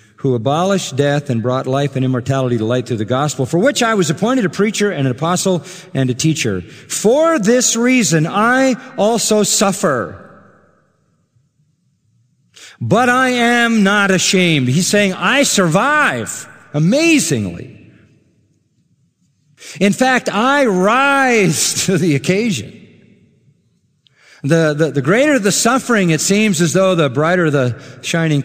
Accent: American